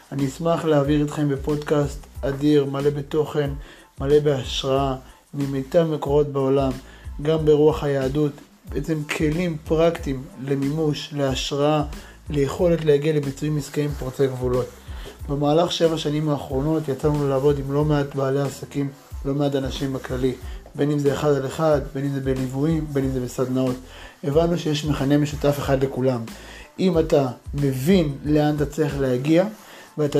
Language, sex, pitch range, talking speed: Hebrew, male, 140-160 Hz, 140 wpm